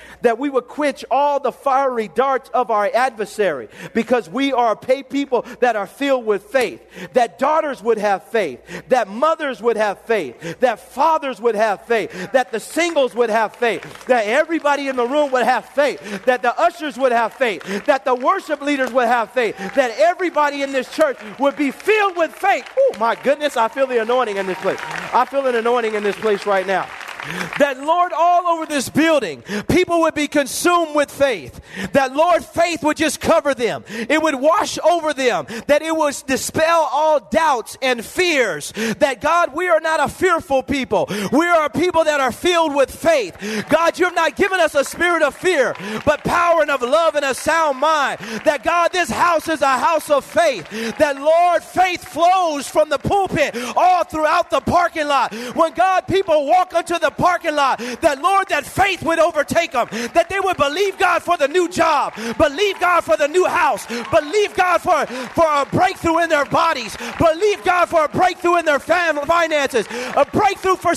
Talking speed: 195 wpm